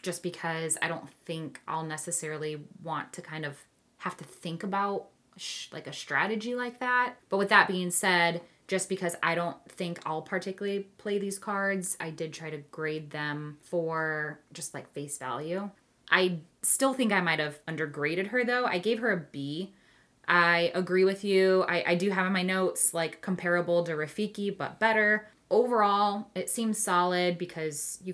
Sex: female